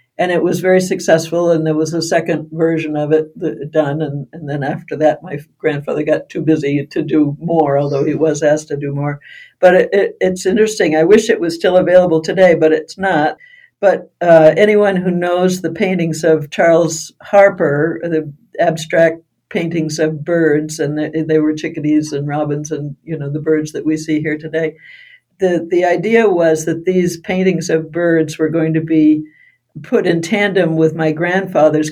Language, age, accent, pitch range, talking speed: English, 60-79, American, 155-175 Hz, 190 wpm